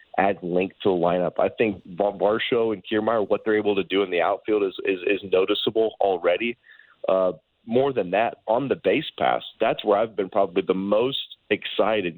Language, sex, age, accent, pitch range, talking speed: English, male, 30-49, American, 100-120 Hz, 190 wpm